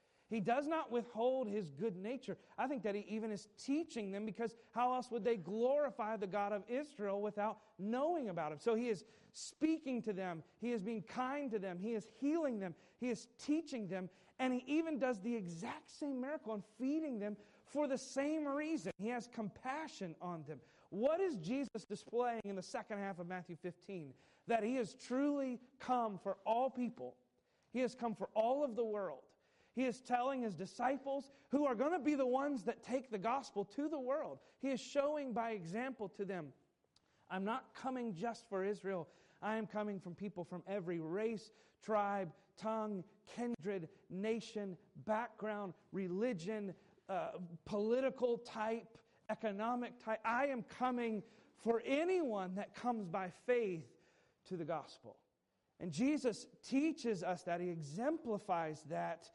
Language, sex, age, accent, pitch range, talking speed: English, male, 40-59, American, 195-255 Hz, 170 wpm